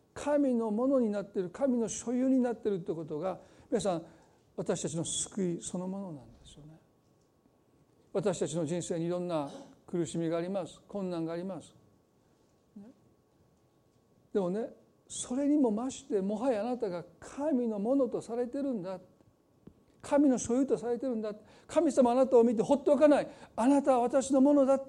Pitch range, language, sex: 190-270 Hz, Japanese, male